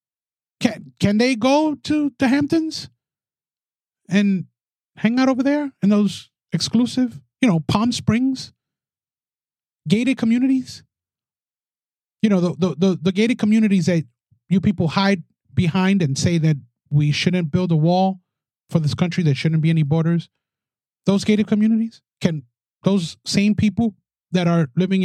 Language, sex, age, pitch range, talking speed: English, male, 30-49, 150-200 Hz, 145 wpm